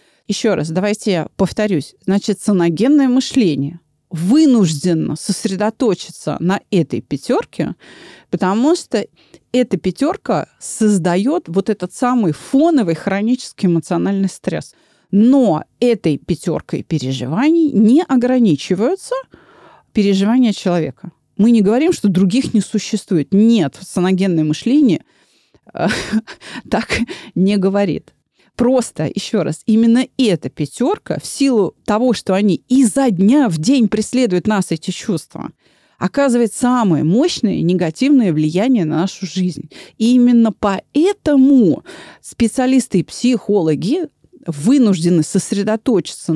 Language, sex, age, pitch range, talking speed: Russian, female, 30-49, 180-250 Hz, 105 wpm